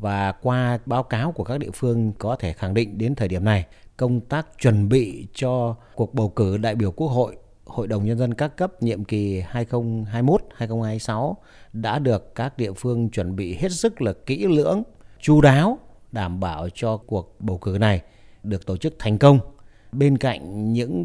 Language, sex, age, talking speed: Vietnamese, male, 30-49, 190 wpm